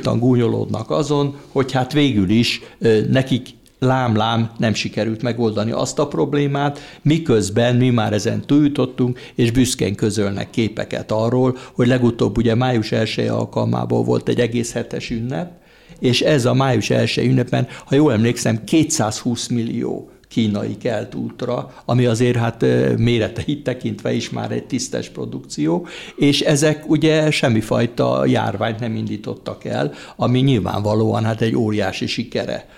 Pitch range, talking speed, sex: 110-135 Hz, 135 wpm, male